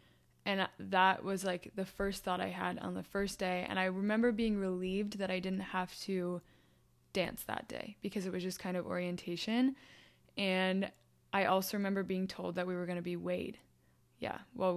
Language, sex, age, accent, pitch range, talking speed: English, female, 20-39, American, 180-205 Hz, 195 wpm